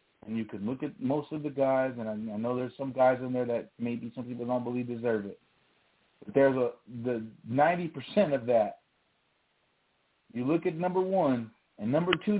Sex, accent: male, American